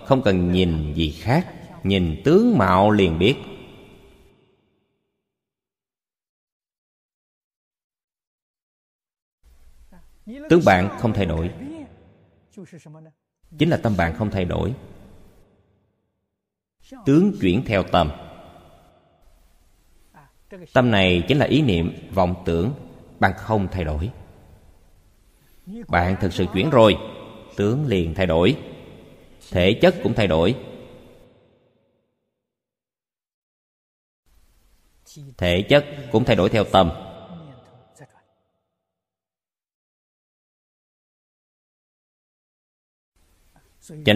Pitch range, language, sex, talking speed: 90-115 Hz, Vietnamese, male, 80 wpm